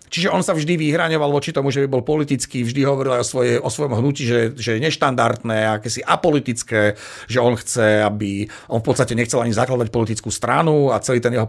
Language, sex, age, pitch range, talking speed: Slovak, male, 40-59, 120-145 Hz, 215 wpm